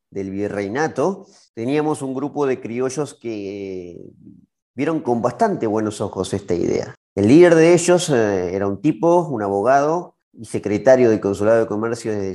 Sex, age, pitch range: male, 30-49, 105-150 Hz